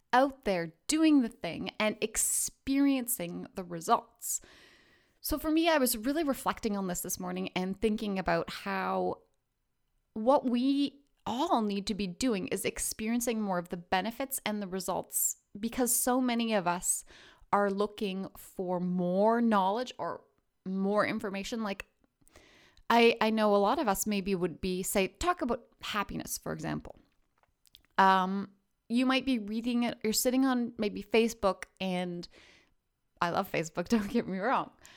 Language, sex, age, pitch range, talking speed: English, female, 20-39, 190-255 Hz, 155 wpm